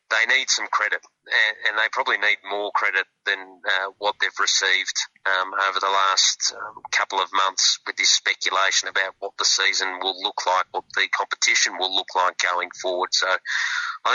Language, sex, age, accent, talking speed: English, male, 30-49, Australian, 180 wpm